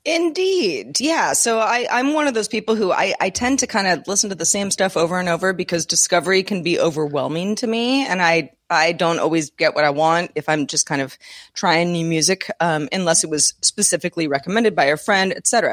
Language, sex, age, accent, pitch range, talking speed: English, female, 30-49, American, 170-240 Hz, 220 wpm